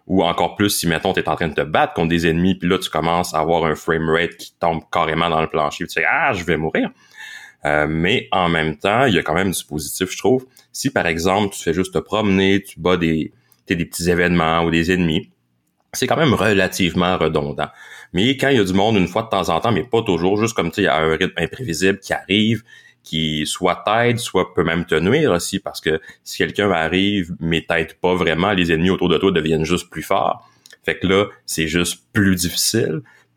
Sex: male